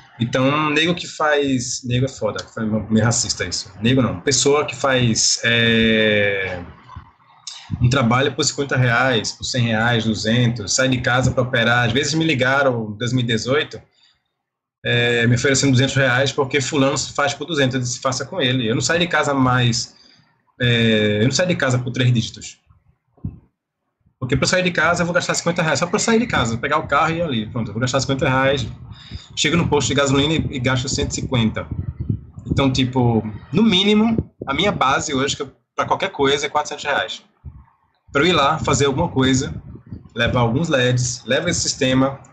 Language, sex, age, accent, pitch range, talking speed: Portuguese, male, 20-39, Brazilian, 120-150 Hz, 185 wpm